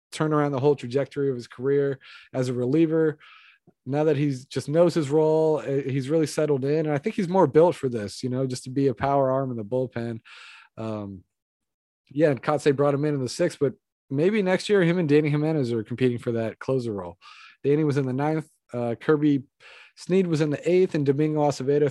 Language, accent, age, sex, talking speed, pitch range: English, American, 30-49, male, 220 wpm, 125-150 Hz